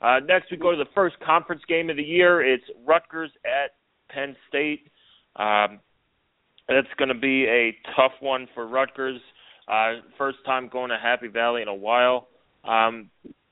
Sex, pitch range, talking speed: male, 110-130 Hz, 170 wpm